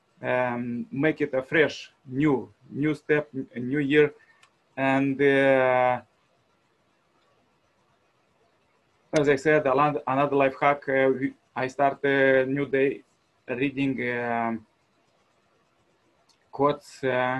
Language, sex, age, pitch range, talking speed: English, male, 30-49, 125-140 Hz, 105 wpm